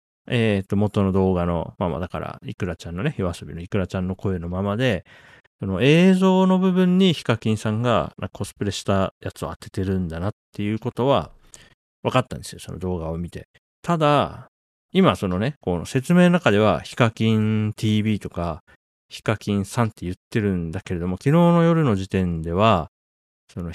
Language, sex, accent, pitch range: Japanese, male, native, 90-125 Hz